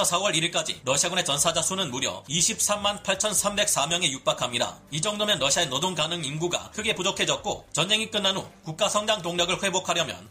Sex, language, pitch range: male, Korean, 160-195 Hz